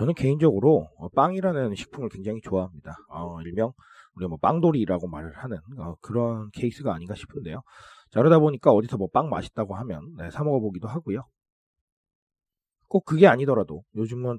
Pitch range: 95-145 Hz